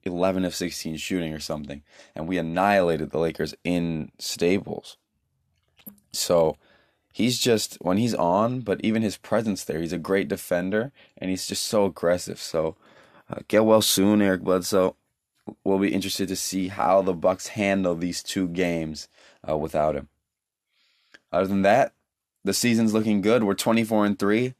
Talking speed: 160 wpm